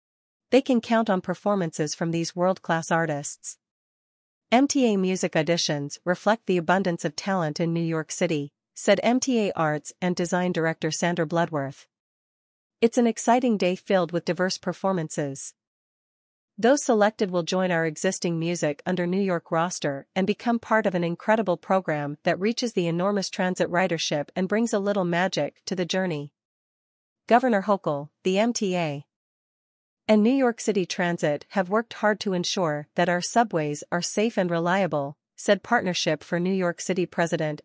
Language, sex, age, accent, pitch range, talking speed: English, female, 40-59, American, 165-200 Hz, 155 wpm